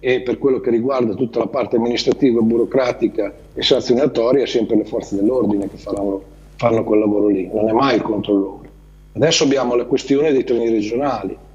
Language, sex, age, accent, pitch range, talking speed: Italian, male, 40-59, native, 110-150 Hz, 180 wpm